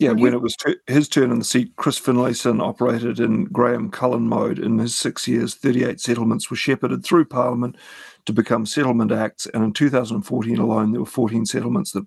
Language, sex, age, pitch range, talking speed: English, male, 50-69, 120-135 Hz, 195 wpm